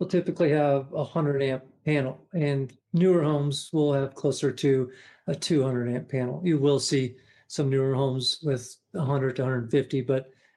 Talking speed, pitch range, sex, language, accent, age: 160 wpm, 140-175 Hz, male, English, American, 40-59